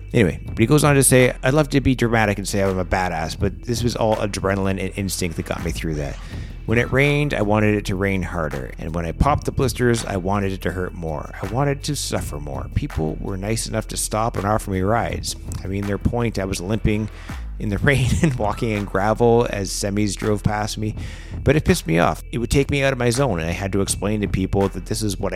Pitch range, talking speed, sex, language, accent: 90-110 Hz, 255 wpm, male, English, American